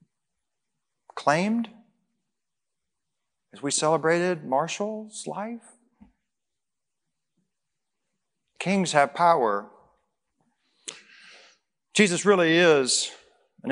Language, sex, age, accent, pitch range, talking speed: English, male, 40-59, American, 165-230 Hz, 55 wpm